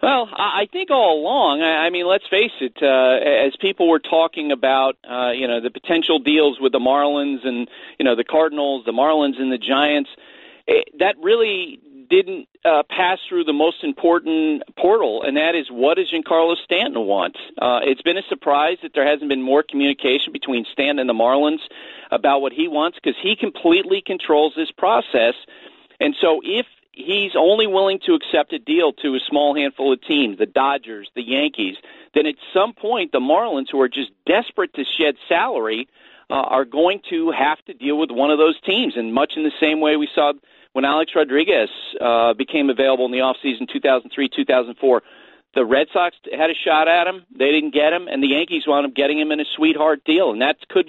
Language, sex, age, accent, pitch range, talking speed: English, male, 40-59, American, 135-195 Hz, 200 wpm